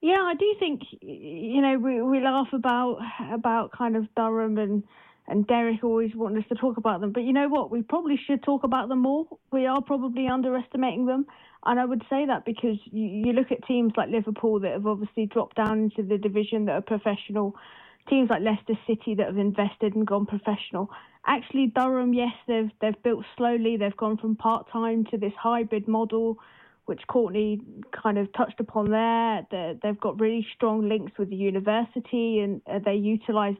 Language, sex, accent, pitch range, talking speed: English, female, British, 215-245 Hz, 190 wpm